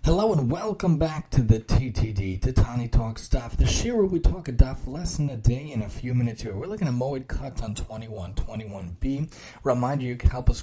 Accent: American